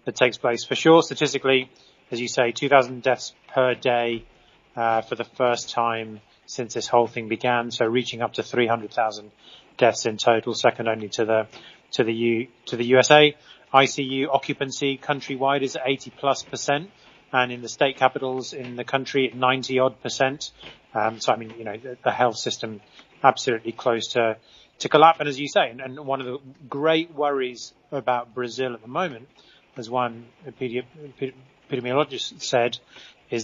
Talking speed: 170 wpm